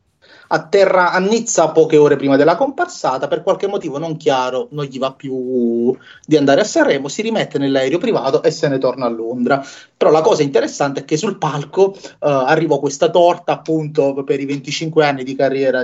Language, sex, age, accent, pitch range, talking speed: Italian, male, 30-49, native, 135-170 Hz, 190 wpm